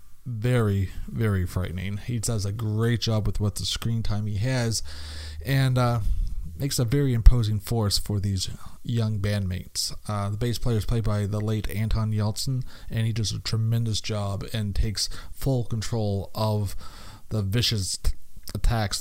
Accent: American